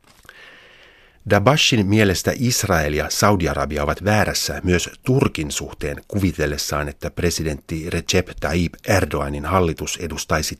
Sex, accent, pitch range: male, native, 75-95 Hz